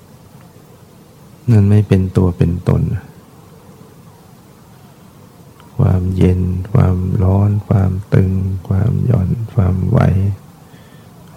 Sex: male